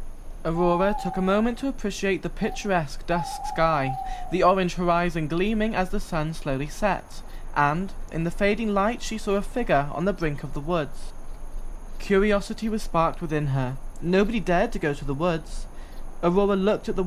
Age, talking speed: 20-39, 175 wpm